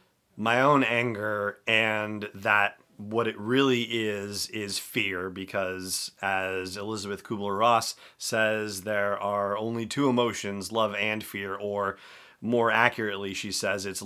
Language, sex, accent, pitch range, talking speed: English, male, American, 100-120 Hz, 130 wpm